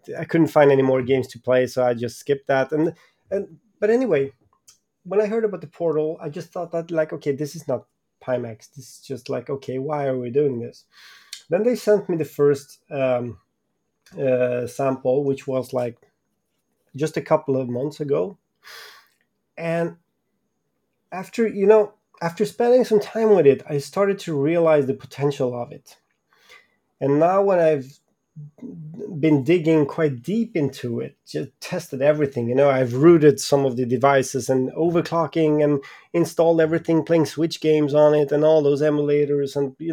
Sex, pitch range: male, 135-170 Hz